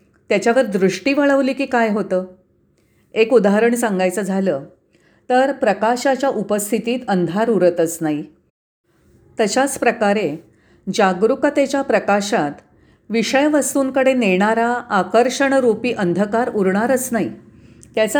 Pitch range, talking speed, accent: 190-255 Hz, 90 wpm, native